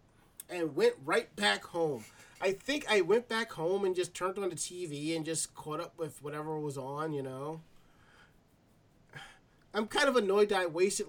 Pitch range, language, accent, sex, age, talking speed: 155-200 Hz, English, American, male, 30-49, 185 wpm